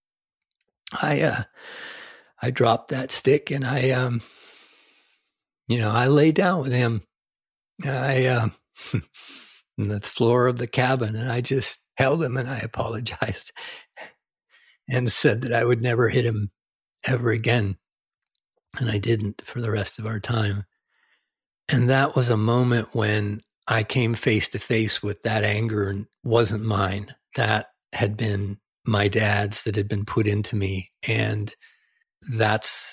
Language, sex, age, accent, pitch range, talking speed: English, male, 50-69, American, 105-120 Hz, 150 wpm